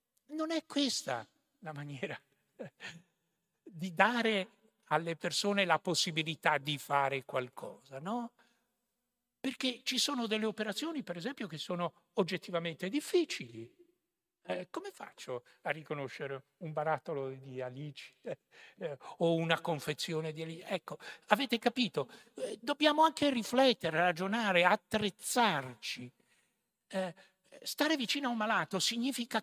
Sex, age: male, 60-79